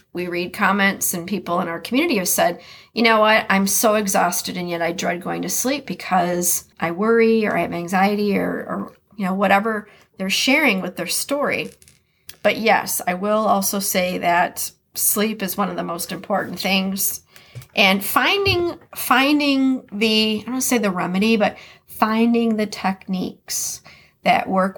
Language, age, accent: English, 40-59, American